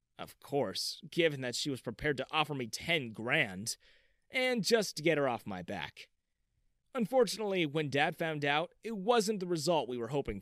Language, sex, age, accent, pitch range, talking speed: English, male, 30-49, American, 130-200 Hz, 185 wpm